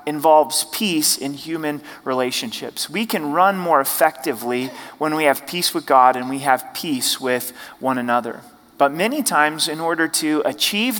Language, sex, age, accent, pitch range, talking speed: English, male, 30-49, American, 145-195 Hz, 165 wpm